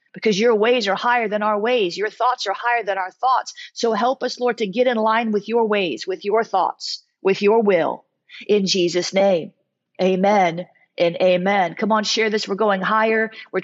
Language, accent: English, American